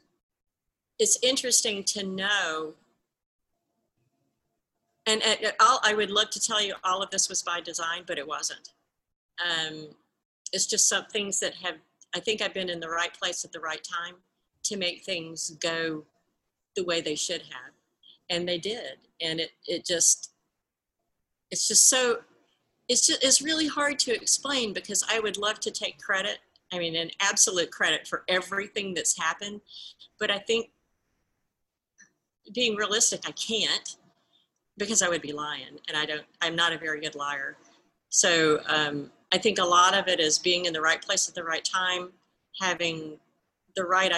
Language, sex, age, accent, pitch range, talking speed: English, female, 50-69, American, 165-200 Hz, 170 wpm